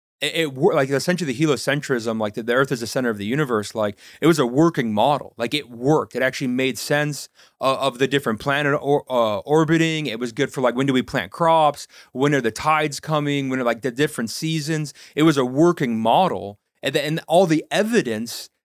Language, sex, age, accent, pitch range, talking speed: English, male, 30-49, American, 120-150 Hz, 220 wpm